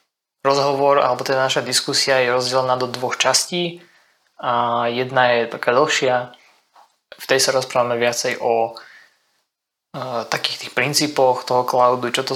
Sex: male